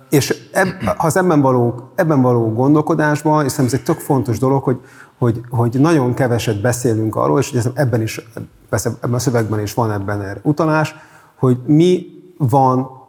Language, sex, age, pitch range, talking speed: Hungarian, male, 30-49, 115-140 Hz, 165 wpm